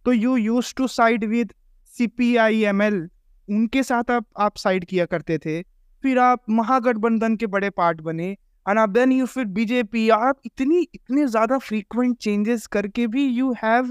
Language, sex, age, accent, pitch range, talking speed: Hindi, male, 20-39, native, 175-230 Hz, 110 wpm